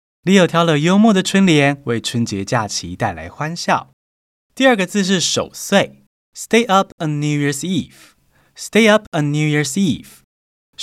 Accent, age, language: native, 20-39, Chinese